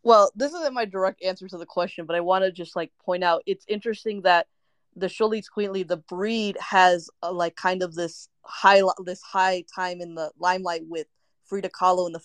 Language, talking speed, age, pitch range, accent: English, 210 wpm, 20-39, 175-205 Hz, American